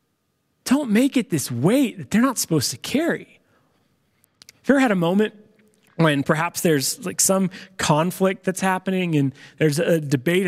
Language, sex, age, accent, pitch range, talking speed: English, male, 30-49, American, 160-215 Hz, 165 wpm